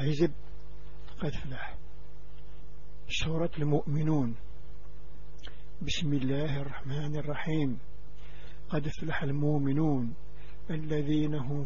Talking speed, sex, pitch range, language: 70 wpm, male, 130-155 Hz, Arabic